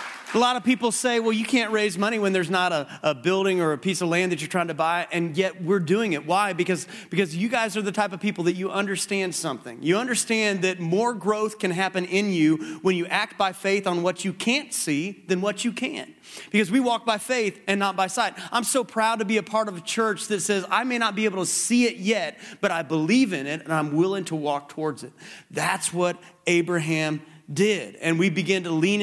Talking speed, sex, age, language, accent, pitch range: 245 wpm, male, 30-49, English, American, 170-215 Hz